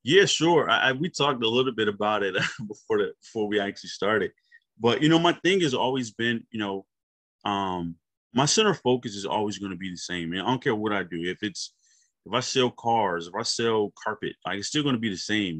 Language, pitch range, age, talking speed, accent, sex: English, 95-120 Hz, 20-39, 245 wpm, American, male